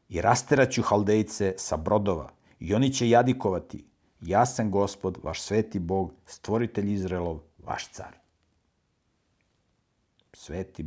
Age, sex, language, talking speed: 50-69, male, English, 110 wpm